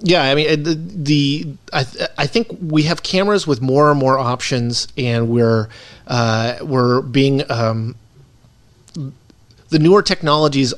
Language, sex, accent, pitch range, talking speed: English, male, American, 120-140 Hz, 145 wpm